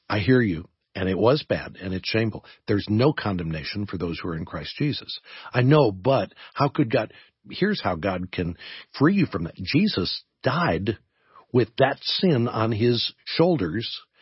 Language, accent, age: English, American, 50-69